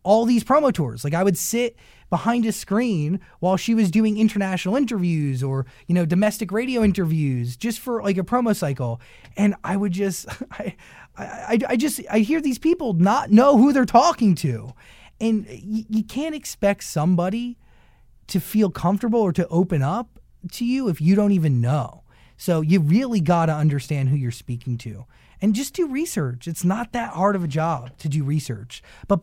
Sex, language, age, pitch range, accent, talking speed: male, English, 20-39, 145-220 Hz, American, 190 wpm